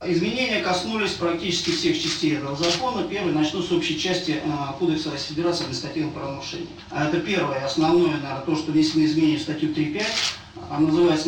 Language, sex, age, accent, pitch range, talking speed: Russian, male, 40-59, native, 155-170 Hz, 175 wpm